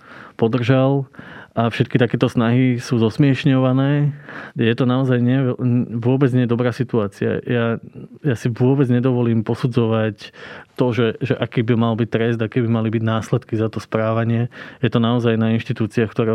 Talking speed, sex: 155 wpm, male